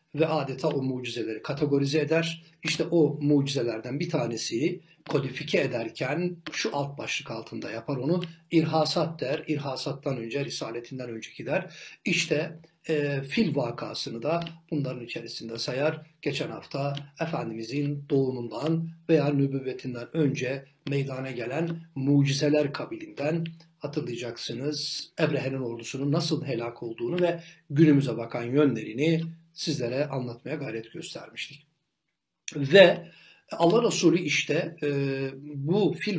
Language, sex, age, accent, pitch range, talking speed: Turkish, male, 60-79, native, 135-165 Hz, 110 wpm